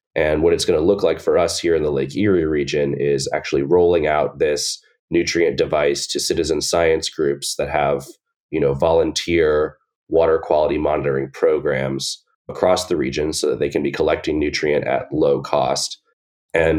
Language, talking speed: English, 175 wpm